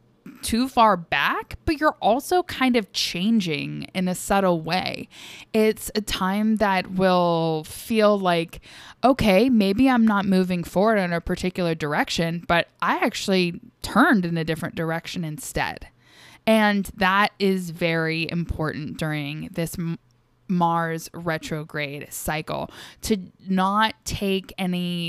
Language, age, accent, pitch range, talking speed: English, 10-29, American, 165-215 Hz, 125 wpm